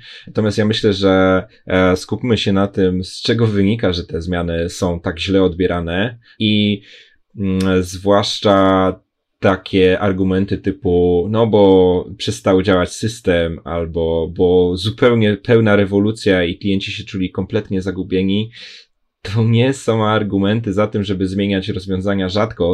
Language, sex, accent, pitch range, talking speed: Polish, male, native, 90-105 Hz, 130 wpm